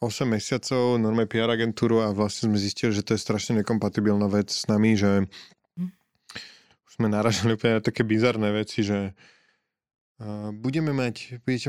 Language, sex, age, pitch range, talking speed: Slovak, male, 20-39, 110-130 Hz, 155 wpm